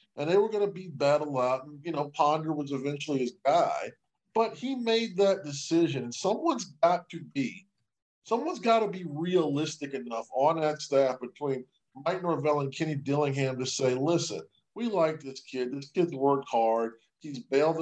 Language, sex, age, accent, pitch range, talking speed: English, male, 40-59, American, 135-170 Hz, 180 wpm